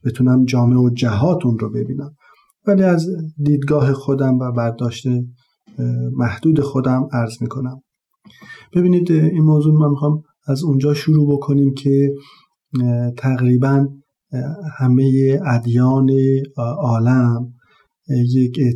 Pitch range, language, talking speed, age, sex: 120-140 Hz, Persian, 100 wpm, 50-69, male